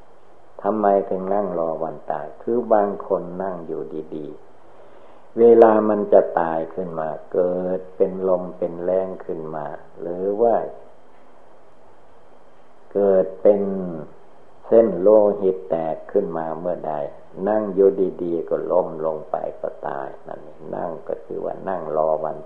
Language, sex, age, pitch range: Thai, male, 60-79, 85-105 Hz